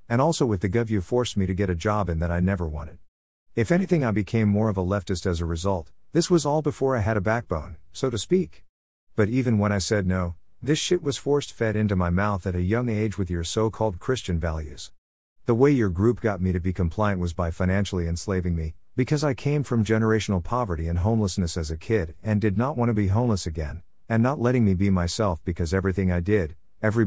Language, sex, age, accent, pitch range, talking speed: English, male, 50-69, American, 90-120 Hz, 235 wpm